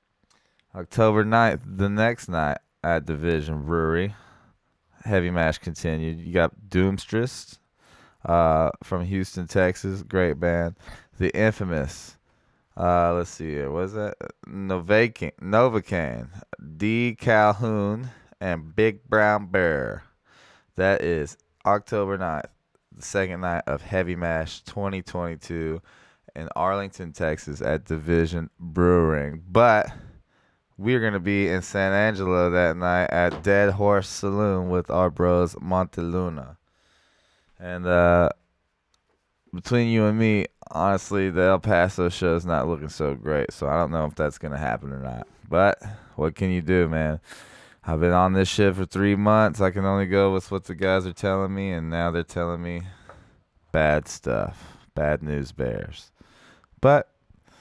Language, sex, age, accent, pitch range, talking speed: English, male, 20-39, American, 85-100 Hz, 140 wpm